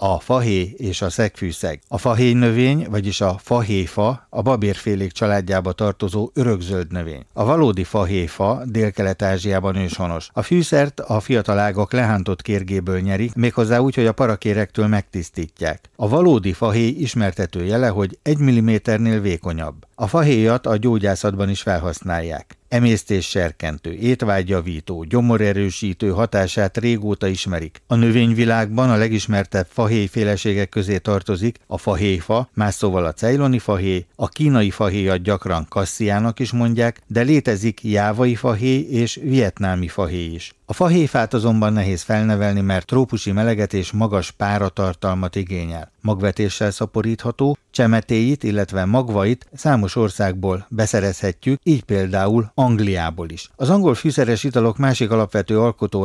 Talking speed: 125 wpm